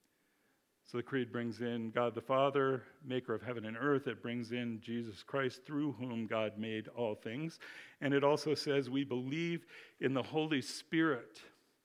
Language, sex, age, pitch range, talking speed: English, male, 50-69, 125-150 Hz, 170 wpm